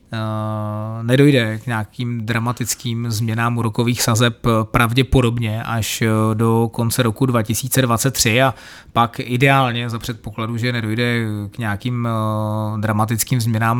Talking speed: 110 wpm